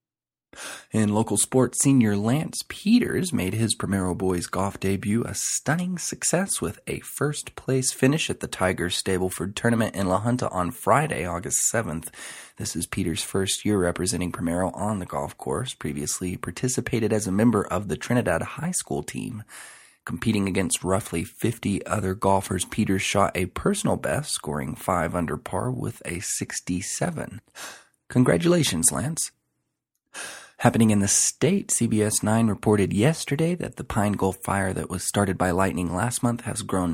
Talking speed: 155 wpm